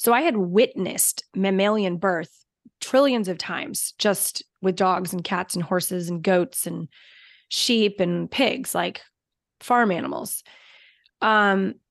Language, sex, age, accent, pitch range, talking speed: English, female, 20-39, American, 185-240 Hz, 130 wpm